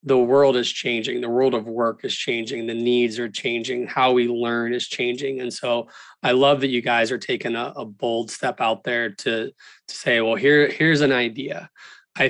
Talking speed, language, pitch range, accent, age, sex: 210 wpm, English, 120-140 Hz, American, 20-39, male